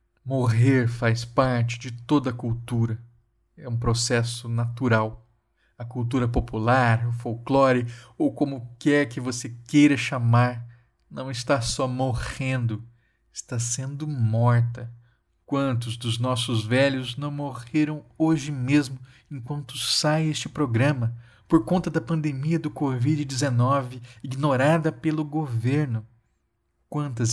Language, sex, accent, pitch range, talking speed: Portuguese, male, Brazilian, 115-135 Hz, 110 wpm